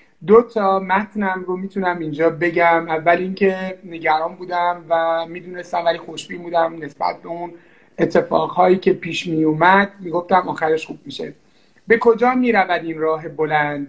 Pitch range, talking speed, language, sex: 165-215 Hz, 140 wpm, Persian, male